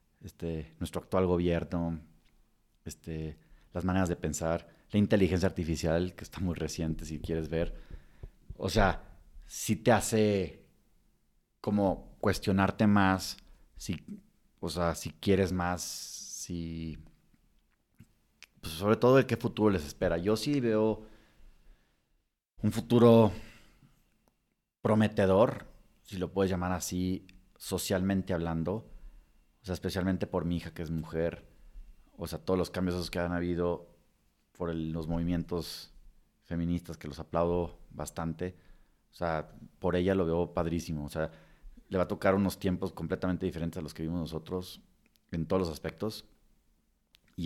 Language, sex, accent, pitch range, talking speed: Spanish, male, Mexican, 80-95 Hz, 140 wpm